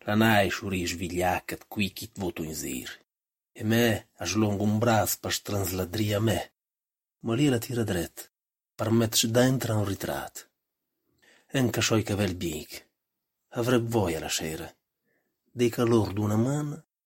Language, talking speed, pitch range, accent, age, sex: Italian, 125 wpm, 90-115 Hz, native, 40-59, male